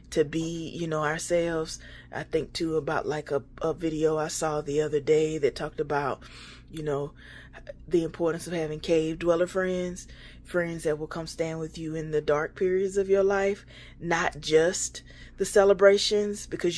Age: 20-39